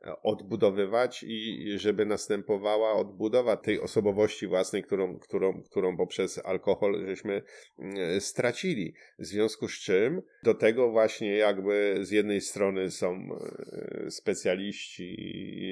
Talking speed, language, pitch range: 105 wpm, Polish, 100-155 Hz